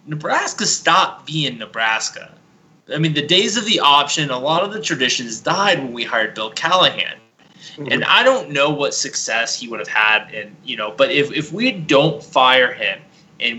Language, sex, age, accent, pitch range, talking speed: English, male, 20-39, American, 125-165 Hz, 190 wpm